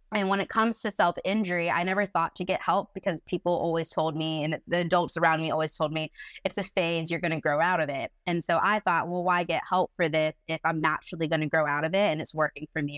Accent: American